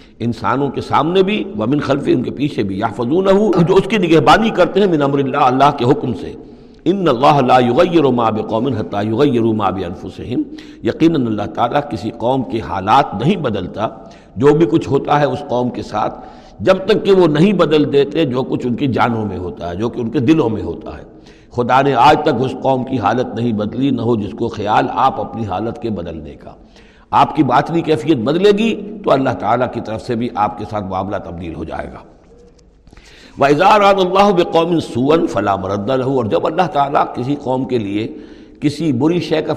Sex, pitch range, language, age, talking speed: male, 115-160 Hz, Urdu, 60-79, 210 wpm